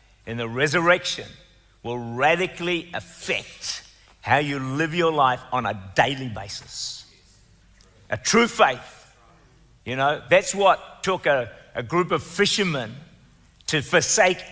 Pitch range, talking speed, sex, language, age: 125-180 Hz, 125 wpm, male, English, 50-69